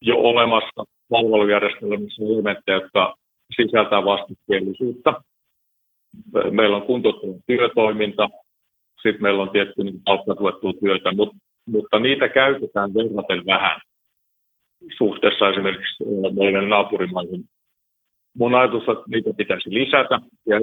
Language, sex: Finnish, male